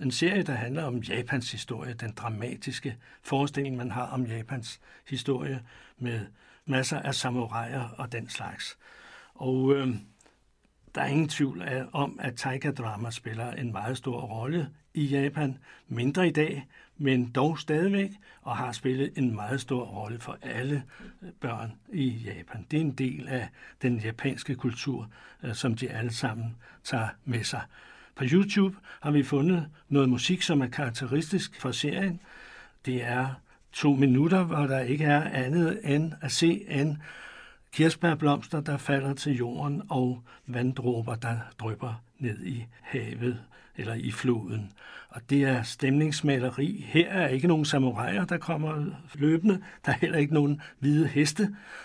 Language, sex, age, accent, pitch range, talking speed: Danish, male, 60-79, native, 125-150 Hz, 155 wpm